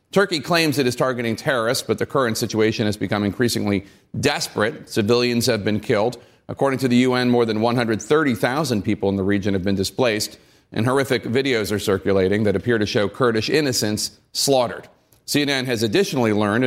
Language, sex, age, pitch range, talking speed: English, male, 40-59, 115-140 Hz, 175 wpm